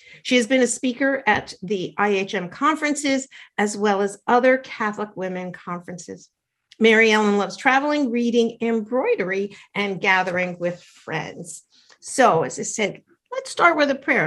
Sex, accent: female, American